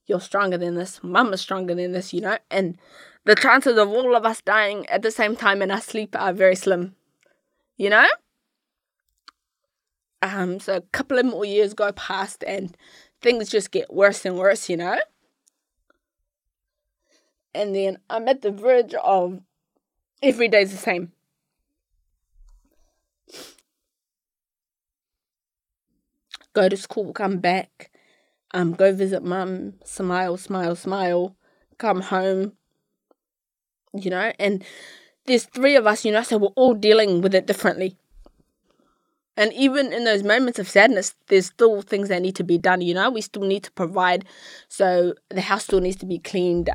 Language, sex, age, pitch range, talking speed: English, female, 20-39, 185-220 Hz, 155 wpm